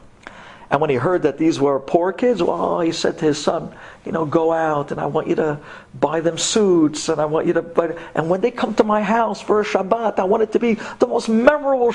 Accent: American